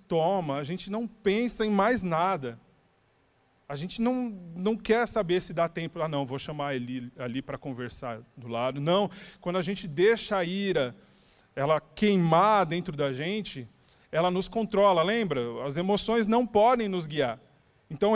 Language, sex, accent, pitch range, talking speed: Portuguese, male, Brazilian, 145-210 Hz, 170 wpm